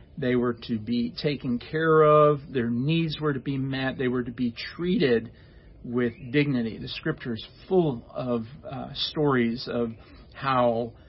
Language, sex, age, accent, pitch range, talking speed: English, male, 50-69, American, 120-140 Hz, 155 wpm